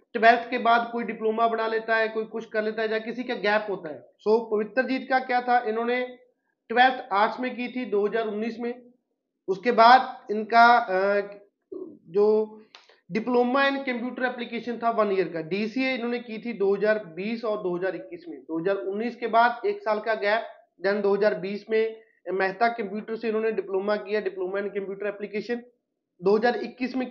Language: Punjabi